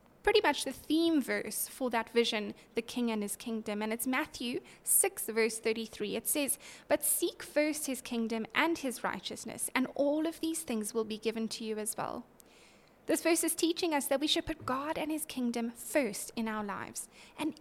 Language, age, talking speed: English, 10-29, 200 wpm